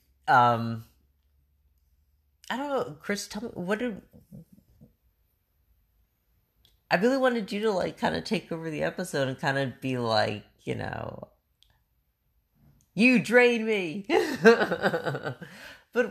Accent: American